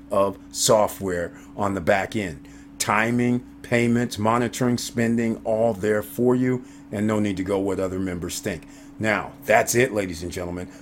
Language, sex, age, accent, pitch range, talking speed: English, male, 50-69, American, 95-115 Hz, 155 wpm